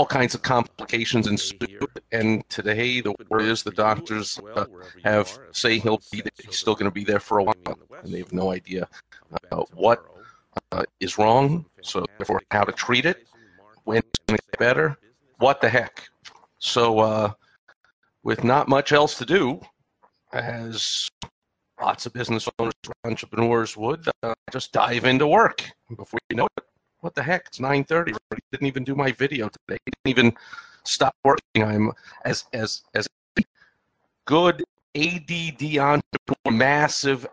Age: 50-69